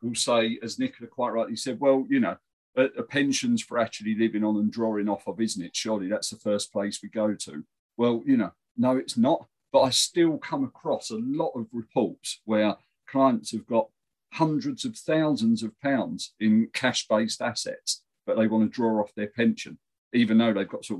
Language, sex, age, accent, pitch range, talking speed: English, male, 50-69, British, 110-160 Hz, 200 wpm